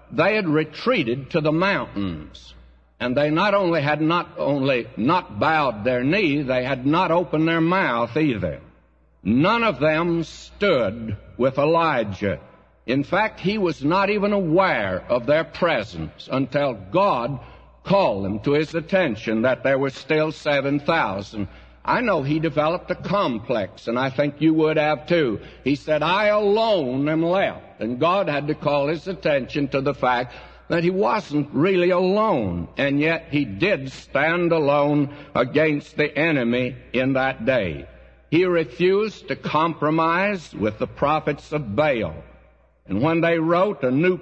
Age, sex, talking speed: 60-79, male, 155 wpm